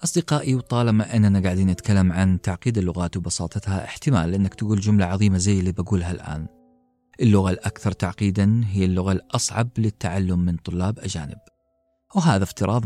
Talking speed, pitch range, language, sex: 140 wpm, 90-115 Hz, Arabic, male